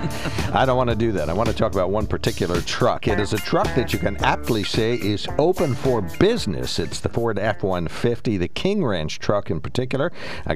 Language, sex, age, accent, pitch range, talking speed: English, male, 60-79, American, 85-115 Hz, 215 wpm